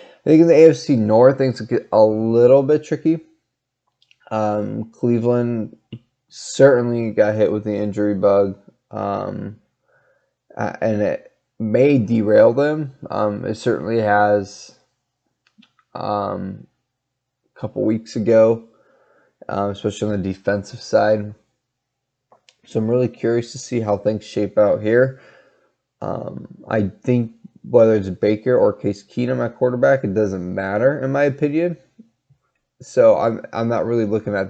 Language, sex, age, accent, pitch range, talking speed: English, male, 20-39, American, 105-130 Hz, 130 wpm